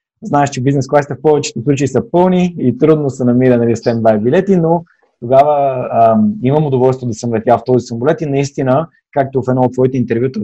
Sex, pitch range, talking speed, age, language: male, 120-150 Hz, 200 wpm, 20-39, Bulgarian